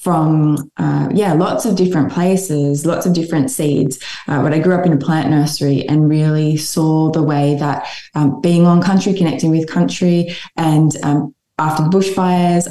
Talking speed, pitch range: 175 wpm, 145-175 Hz